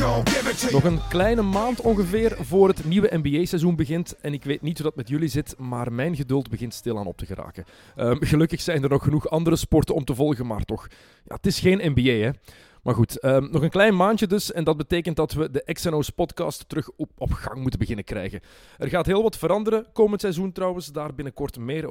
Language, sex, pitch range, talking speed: Dutch, male, 120-160 Hz, 210 wpm